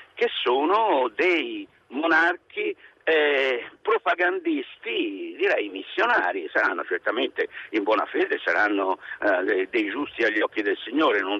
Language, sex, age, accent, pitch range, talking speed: Italian, male, 60-79, native, 320-440 Hz, 115 wpm